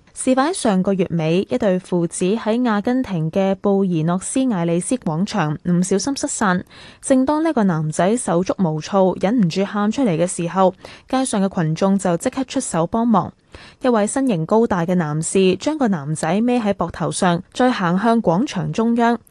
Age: 10-29